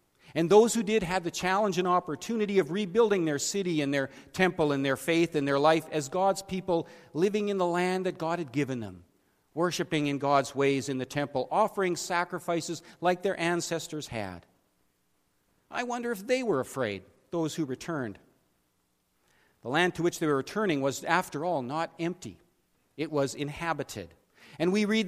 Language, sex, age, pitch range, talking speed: English, male, 40-59, 150-200 Hz, 175 wpm